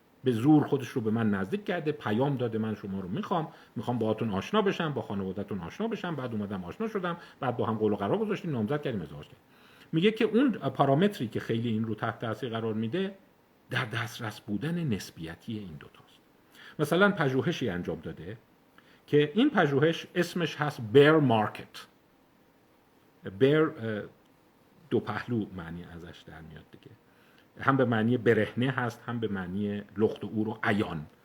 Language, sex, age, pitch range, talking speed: Persian, male, 50-69, 105-155 Hz, 170 wpm